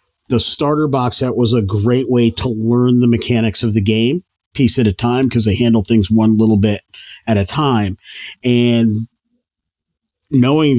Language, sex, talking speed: English, male, 175 wpm